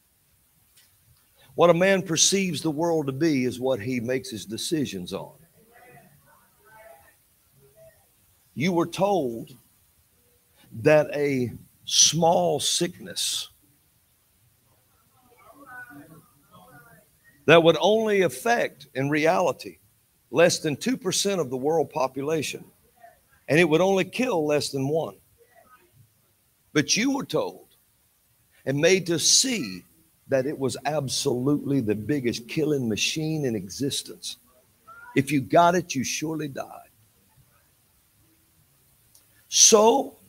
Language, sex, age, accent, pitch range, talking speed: English, male, 50-69, American, 125-170 Hz, 105 wpm